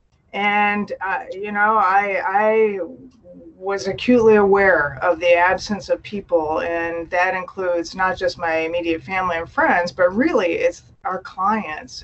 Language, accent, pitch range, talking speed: English, American, 170-220 Hz, 145 wpm